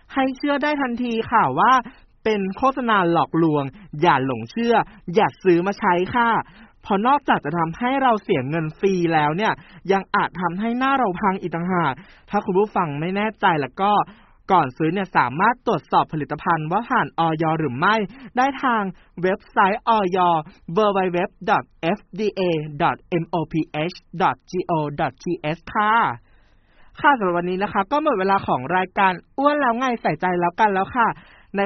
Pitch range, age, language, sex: 170-235 Hz, 20-39, Thai, male